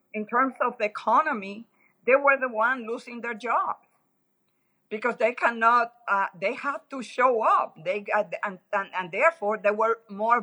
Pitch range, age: 190-245 Hz, 50-69